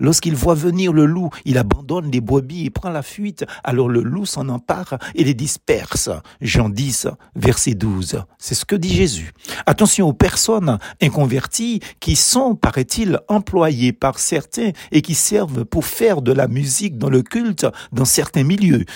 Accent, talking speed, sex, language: French, 170 wpm, male, French